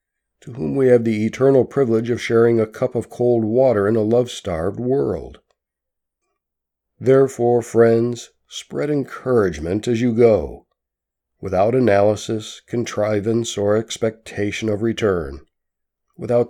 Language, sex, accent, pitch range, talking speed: English, male, American, 100-120 Hz, 120 wpm